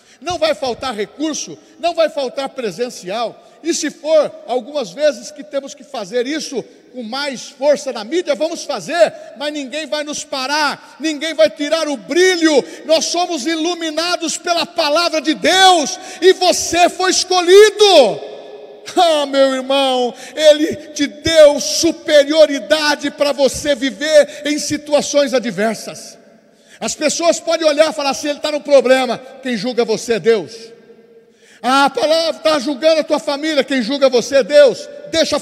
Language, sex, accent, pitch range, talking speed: Portuguese, male, Brazilian, 260-305 Hz, 150 wpm